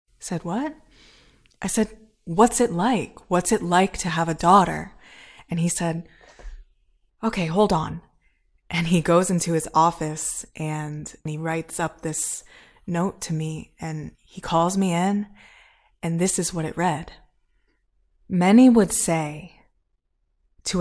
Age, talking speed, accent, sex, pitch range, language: 20-39, 140 wpm, American, female, 160-195 Hz, English